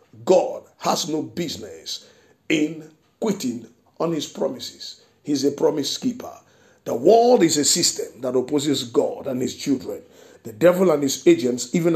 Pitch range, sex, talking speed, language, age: 145-195 Hz, male, 150 wpm, English, 50-69